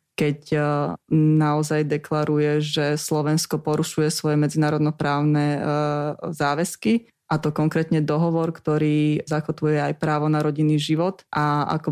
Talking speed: 110 wpm